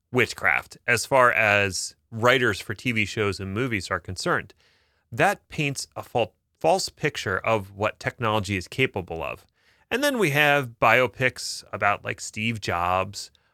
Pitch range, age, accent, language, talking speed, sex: 100-135 Hz, 30-49, American, English, 140 wpm, male